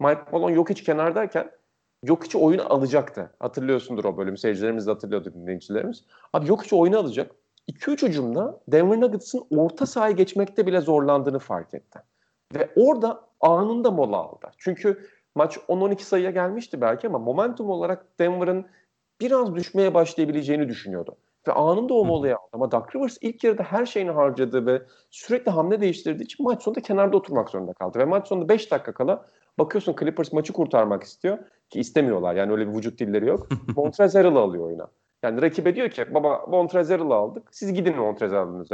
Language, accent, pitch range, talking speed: Turkish, native, 145-200 Hz, 165 wpm